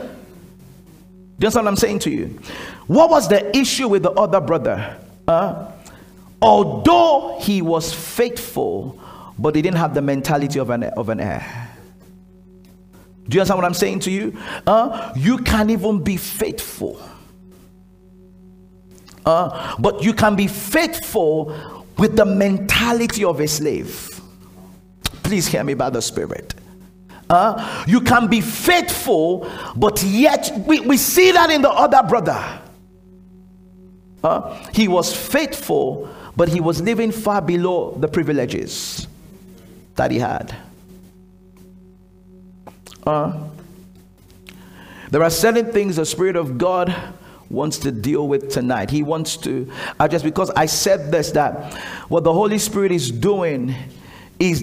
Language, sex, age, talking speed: English, male, 50-69, 135 wpm